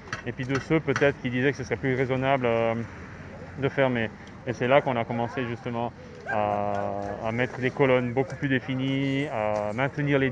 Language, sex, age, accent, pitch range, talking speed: French, male, 20-39, French, 115-140 Hz, 190 wpm